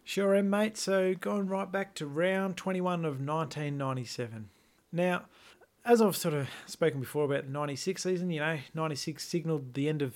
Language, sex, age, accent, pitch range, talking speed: English, male, 30-49, Australian, 125-160 Hz, 175 wpm